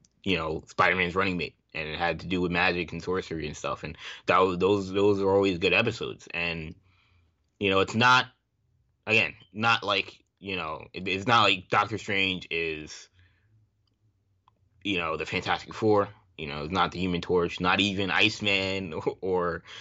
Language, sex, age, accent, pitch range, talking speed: English, male, 20-39, American, 85-105 Hz, 175 wpm